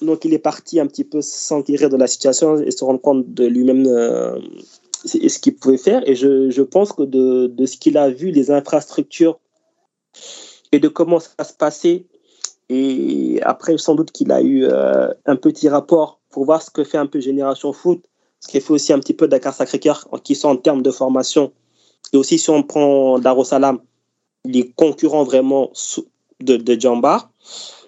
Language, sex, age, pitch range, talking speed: French, male, 20-39, 135-195 Hz, 190 wpm